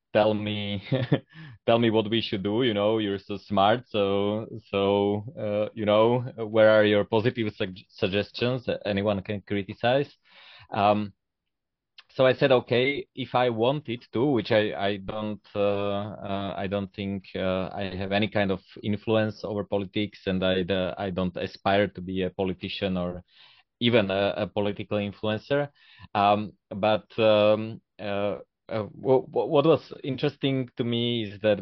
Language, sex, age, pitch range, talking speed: English, male, 20-39, 100-110 Hz, 160 wpm